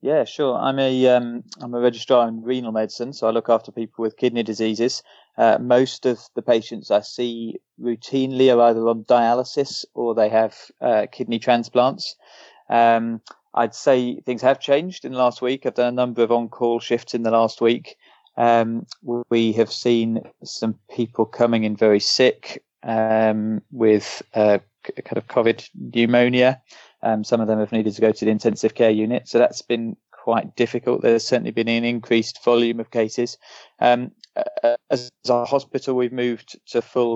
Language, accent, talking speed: English, British, 175 wpm